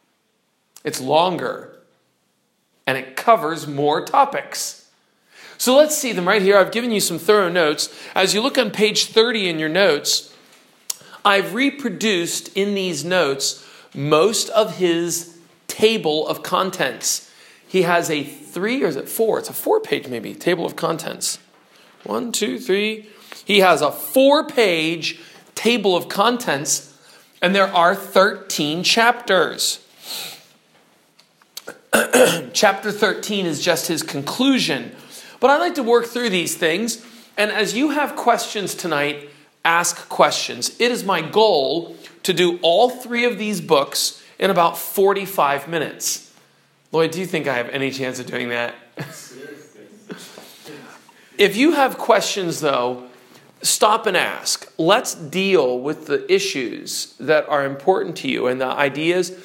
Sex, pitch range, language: male, 160-230 Hz, English